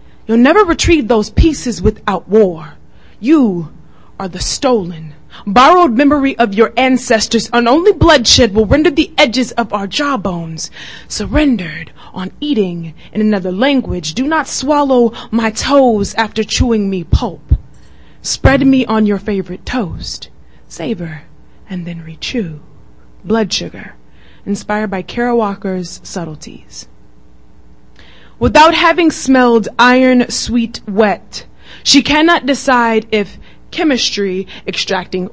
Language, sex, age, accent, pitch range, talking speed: English, female, 20-39, American, 185-265 Hz, 120 wpm